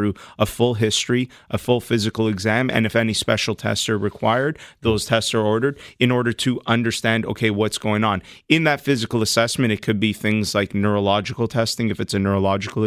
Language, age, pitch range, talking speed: English, 30-49, 105-120 Hz, 190 wpm